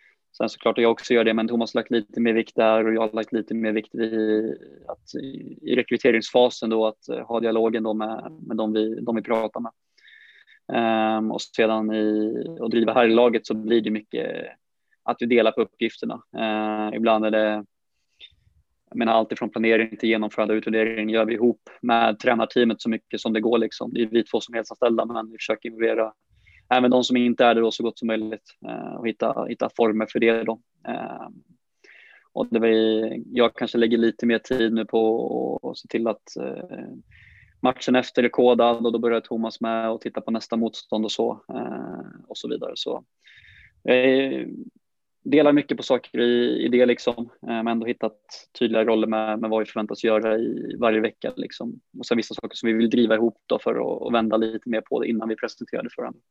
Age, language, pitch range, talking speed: 20-39, Swedish, 110-115 Hz, 210 wpm